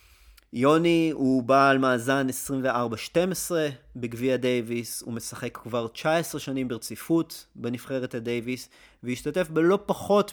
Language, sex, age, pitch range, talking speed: Hebrew, male, 30-49, 115-155 Hz, 105 wpm